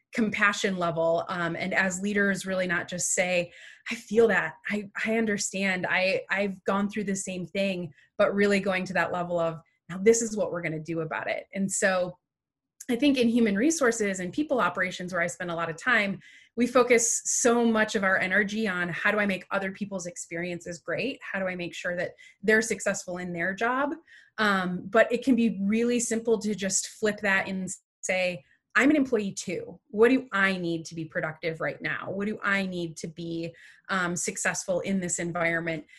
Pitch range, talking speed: 175-220 Hz, 200 wpm